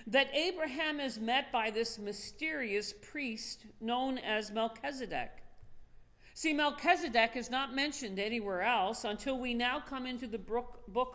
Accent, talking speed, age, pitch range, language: American, 135 wpm, 50-69, 205-260 Hz, English